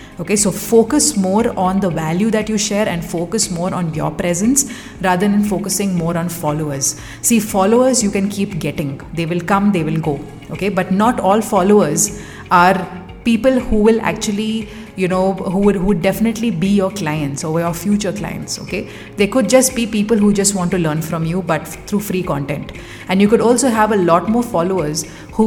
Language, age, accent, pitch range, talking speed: English, 30-49, Indian, 170-220 Hz, 200 wpm